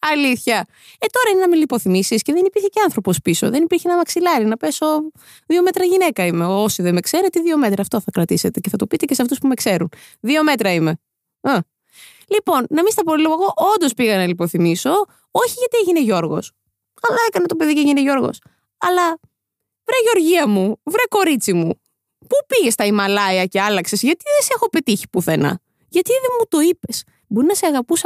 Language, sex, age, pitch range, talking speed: Greek, female, 20-39, 210-335 Hz, 200 wpm